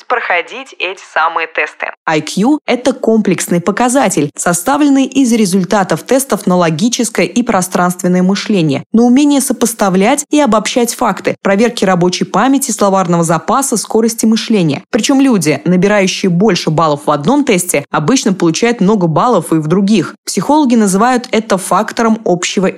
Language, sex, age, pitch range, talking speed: Russian, female, 20-39, 175-240 Hz, 135 wpm